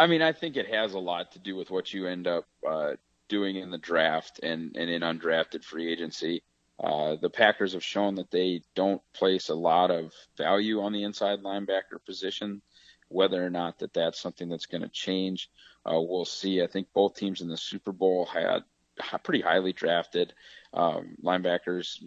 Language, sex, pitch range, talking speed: English, male, 85-100 Hz, 190 wpm